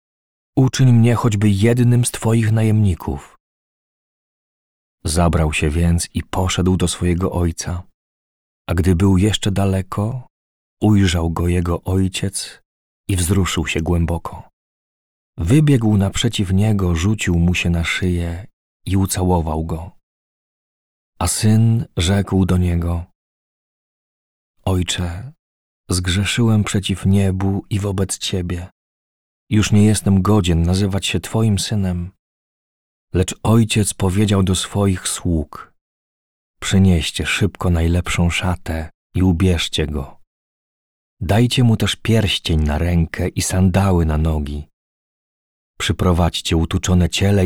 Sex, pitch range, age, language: male, 85-105 Hz, 40-59, Polish